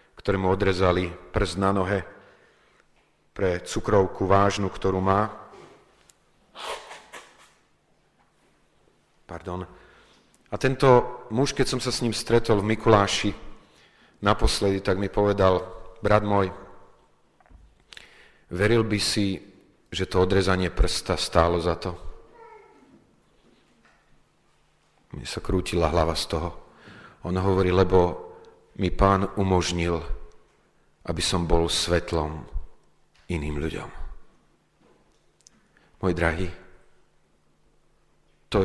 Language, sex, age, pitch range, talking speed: Slovak, male, 40-59, 85-105 Hz, 90 wpm